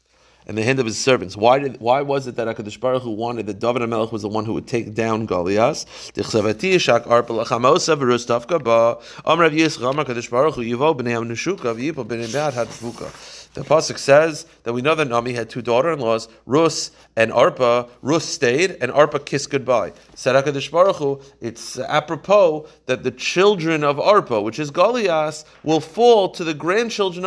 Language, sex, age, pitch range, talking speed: English, male, 30-49, 115-160 Hz, 140 wpm